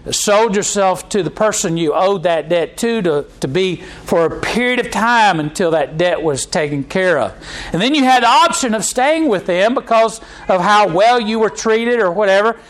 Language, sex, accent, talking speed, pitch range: English, male, American, 210 wpm, 170-225 Hz